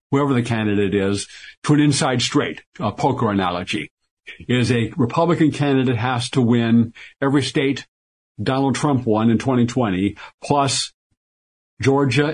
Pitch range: 115-140 Hz